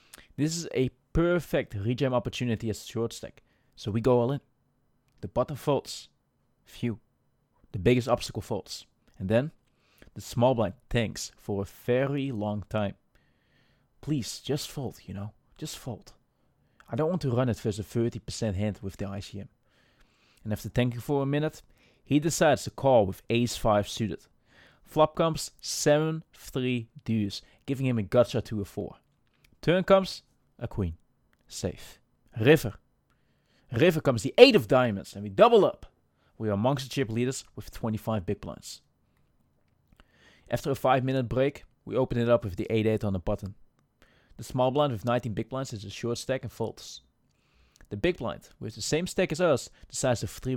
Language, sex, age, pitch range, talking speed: English, male, 20-39, 105-135 Hz, 170 wpm